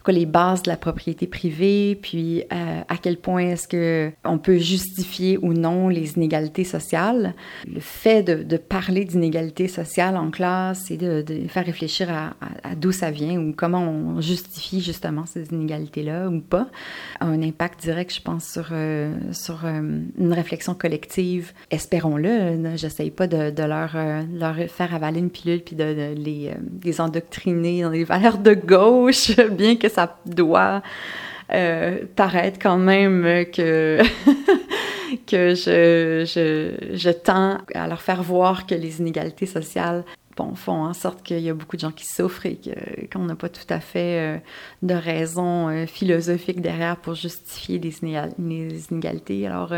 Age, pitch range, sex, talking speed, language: 30-49, 165-185 Hz, female, 165 wpm, French